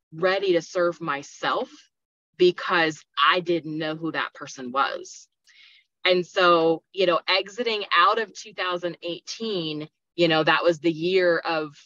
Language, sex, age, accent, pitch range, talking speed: English, female, 20-39, American, 165-210 Hz, 135 wpm